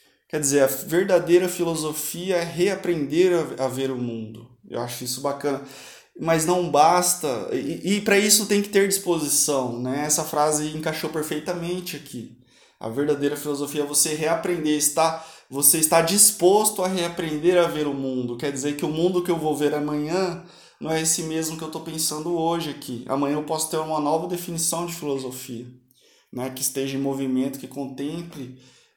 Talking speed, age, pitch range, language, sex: 170 wpm, 20-39, 140-170 Hz, Portuguese, male